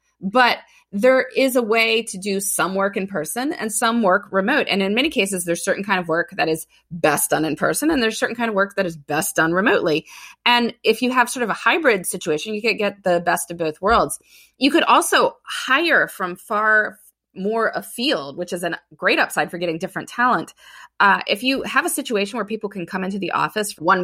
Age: 20-39